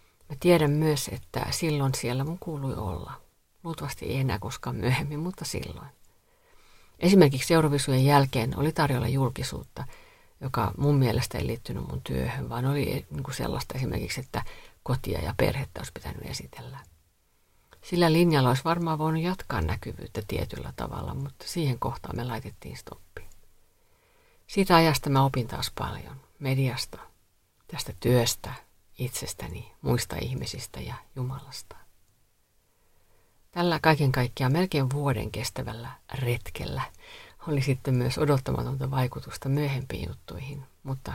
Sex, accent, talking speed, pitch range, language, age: female, native, 125 wpm, 115-165 Hz, Finnish, 50-69